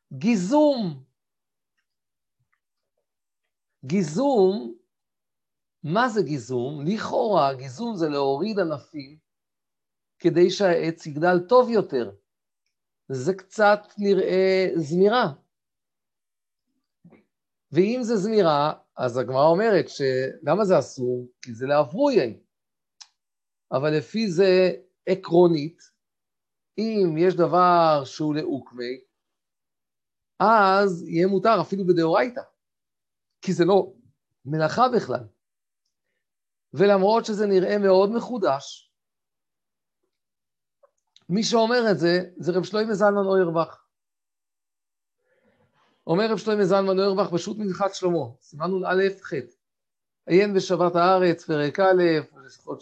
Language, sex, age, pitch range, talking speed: Hebrew, male, 50-69, 155-205 Hz, 95 wpm